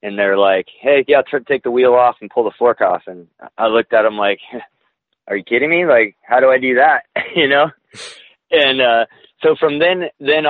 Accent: American